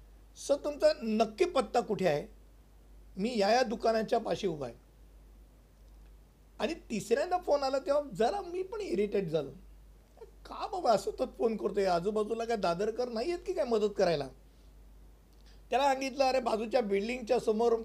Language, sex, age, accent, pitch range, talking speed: Hindi, male, 50-69, native, 175-235 Hz, 110 wpm